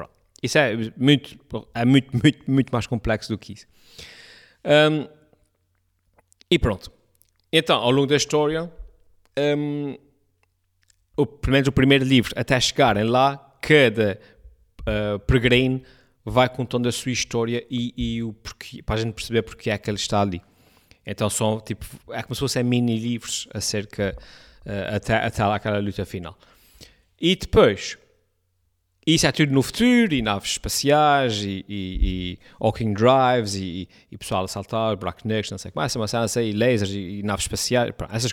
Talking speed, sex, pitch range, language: 160 wpm, male, 105-140 Hz, Portuguese